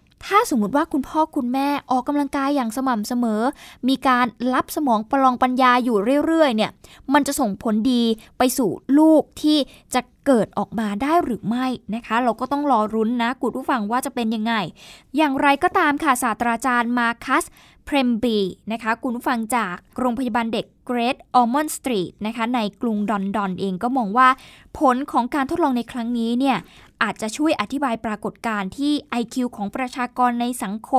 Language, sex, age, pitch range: Thai, female, 20-39, 220-275 Hz